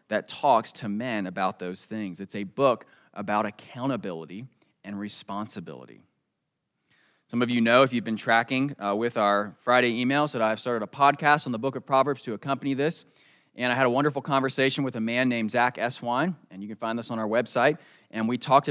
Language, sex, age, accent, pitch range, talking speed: English, male, 20-39, American, 100-135 Hz, 200 wpm